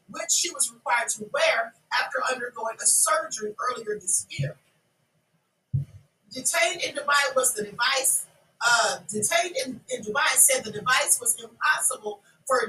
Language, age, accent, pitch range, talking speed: English, 40-59, American, 210-305 Hz, 140 wpm